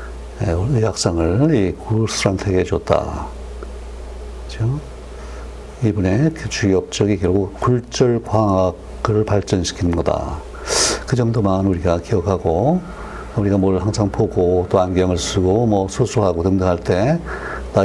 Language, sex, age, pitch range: Korean, male, 60-79, 90-110 Hz